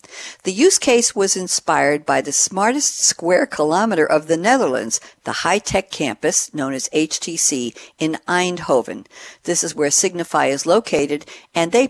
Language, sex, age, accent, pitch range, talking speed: English, female, 60-79, American, 150-205 Hz, 145 wpm